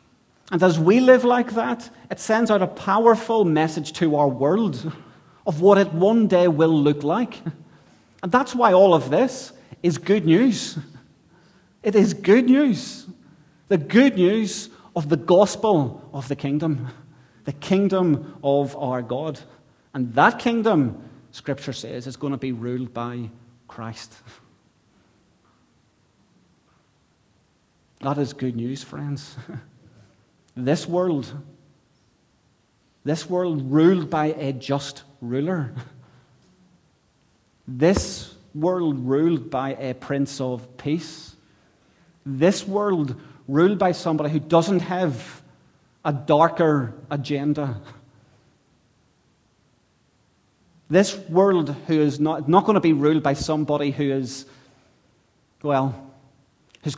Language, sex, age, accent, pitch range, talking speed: English, male, 30-49, British, 135-180 Hz, 115 wpm